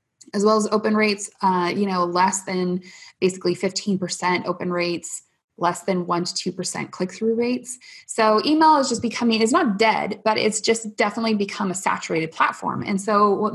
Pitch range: 180-230 Hz